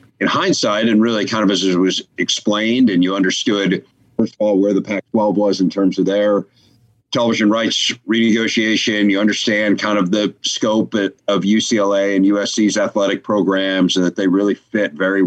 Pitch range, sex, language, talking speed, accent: 90-110 Hz, male, English, 175 wpm, American